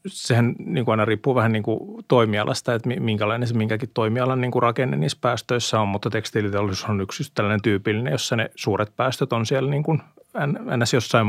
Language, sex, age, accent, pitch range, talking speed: Finnish, male, 30-49, native, 105-130 Hz, 150 wpm